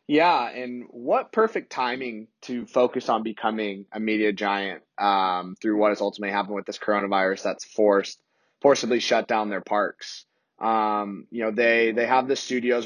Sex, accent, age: male, American, 20-39